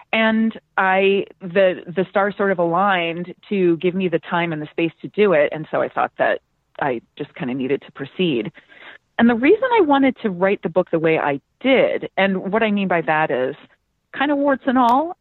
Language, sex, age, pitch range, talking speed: English, female, 30-49, 170-220 Hz, 220 wpm